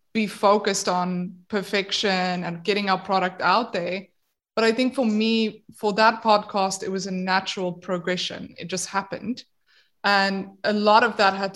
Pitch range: 190-230 Hz